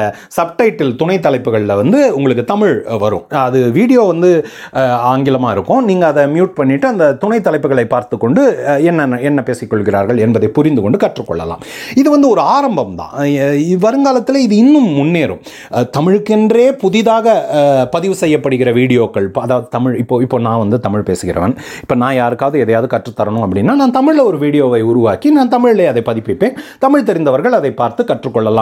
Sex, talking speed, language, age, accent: male, 30 wpm, Tamil, 30-49, native